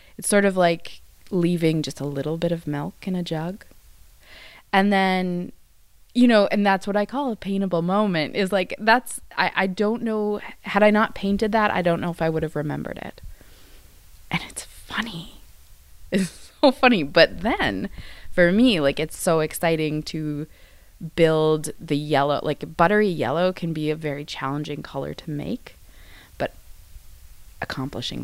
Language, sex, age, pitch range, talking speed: English, female, 20-39, 140-190 Hz, 165 wpm